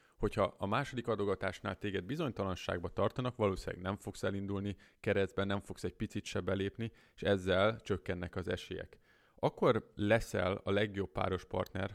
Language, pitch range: Hungarian, 95-110 Hz